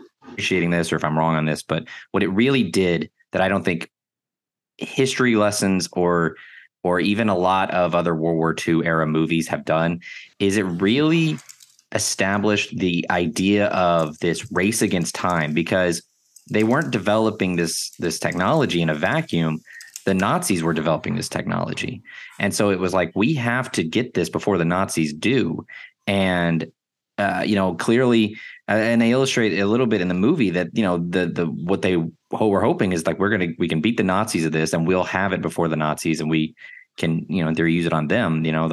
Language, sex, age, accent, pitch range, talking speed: English, male, 20-39, American, 80-105 Hz, 200 wpm